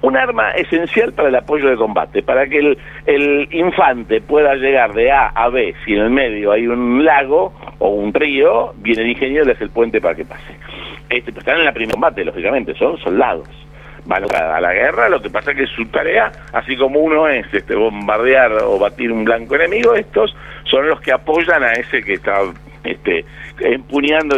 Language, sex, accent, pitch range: Spanish, male, Argentinian, 110-145 Hz